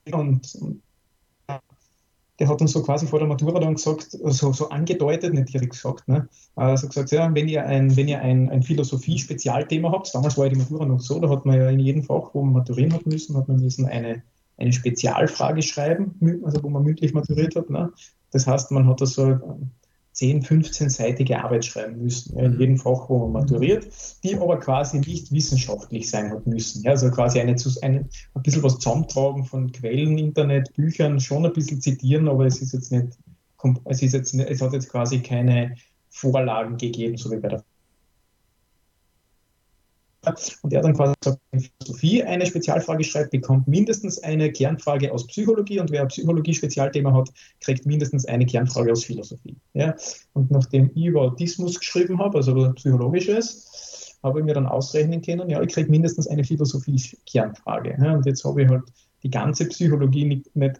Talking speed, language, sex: 185 wpm, German, male